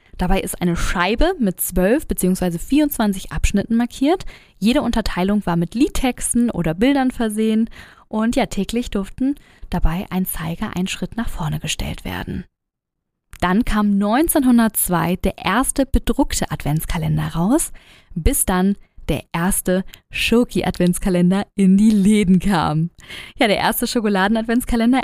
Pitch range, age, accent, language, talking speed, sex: 180-230 Hz, 20-39, German, German, 125 wpm, female